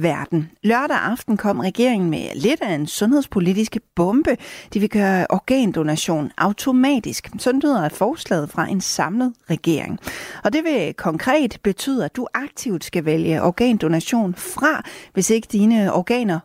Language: Danish